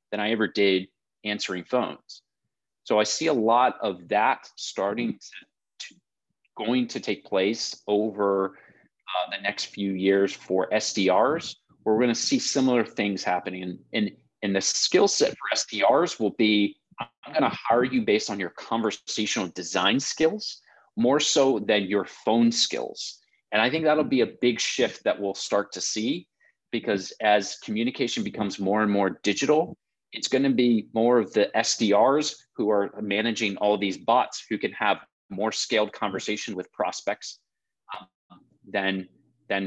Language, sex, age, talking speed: English, male, 30-49, 155 wpm